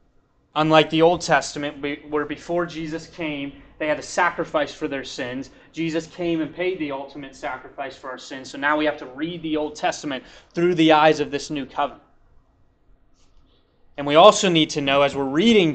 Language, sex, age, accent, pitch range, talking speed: English, male, 20-39, American, 145-170 Hz, 190 wpm